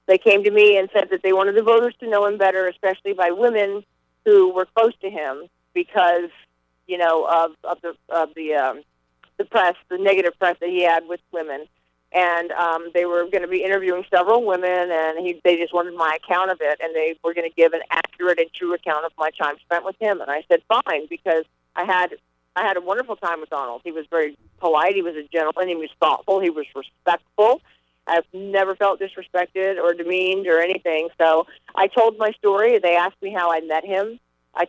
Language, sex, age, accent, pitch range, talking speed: English, female, 40-59, American, 165-195 Hz, 220 wpm